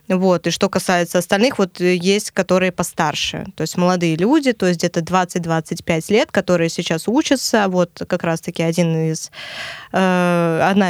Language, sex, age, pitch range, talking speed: Russian, female, 20-39, 175-215 Hz, 155 wpm